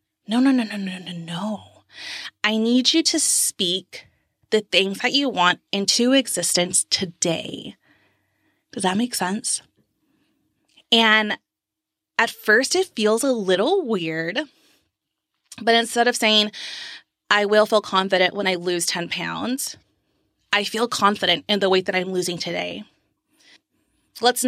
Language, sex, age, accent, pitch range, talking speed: English, female, 20-39, American, 190-255 Hz, 135 wpm